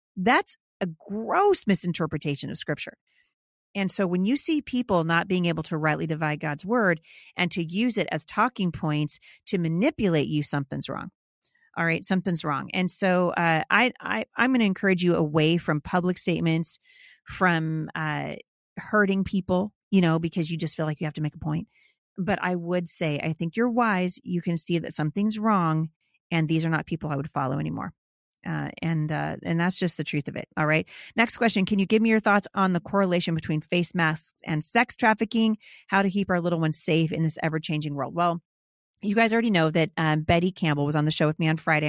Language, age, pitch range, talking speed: English, 30-49, 160-195 Hz, 210 wpm